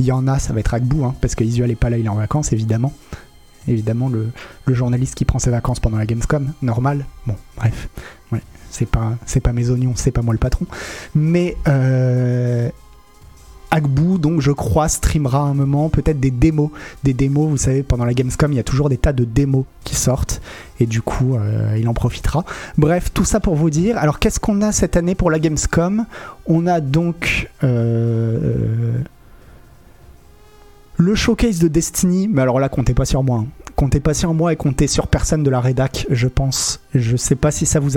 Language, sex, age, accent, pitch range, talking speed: French, male, 30-49, French, 125-160 Hz, 205 wpm